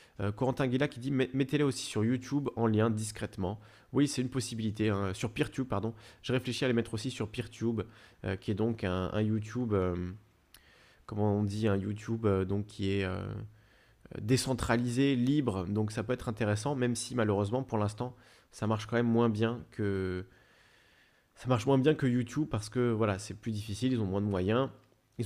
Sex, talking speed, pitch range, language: male, 200 wpm, 100-125 Hz, French